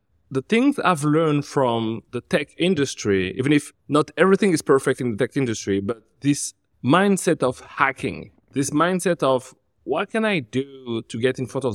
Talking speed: 180 wpm